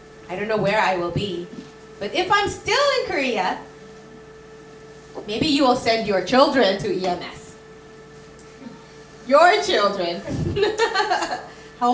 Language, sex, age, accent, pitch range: Korean, female, 30-49, American, 215-320 Hz